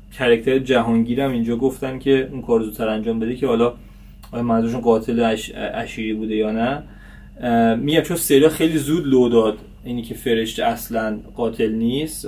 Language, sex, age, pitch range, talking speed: Persian, male, 20-39, 110-130 Hz, 155 wpm